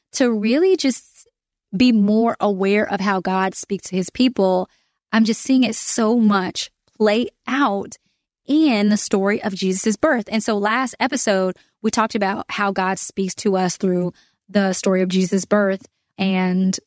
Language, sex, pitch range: English, female, 190-225 Hz